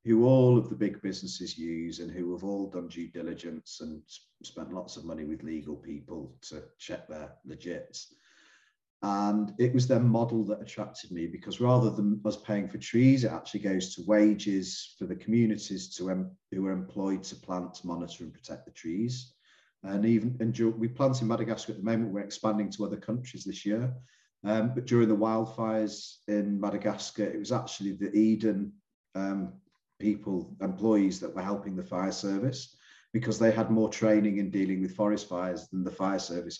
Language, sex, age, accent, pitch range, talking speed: English, male, 40-59, British, 95-115 Hz, 185 wpm